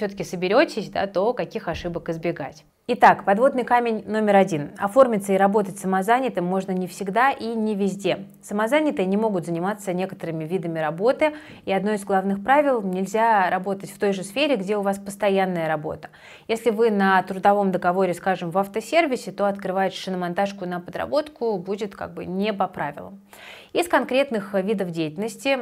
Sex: female